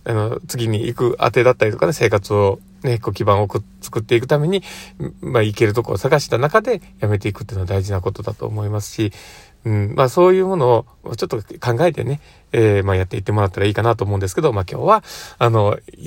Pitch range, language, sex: 105-140 Hz, Japanese, male